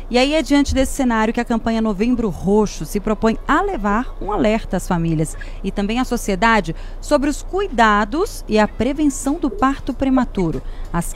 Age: 30-49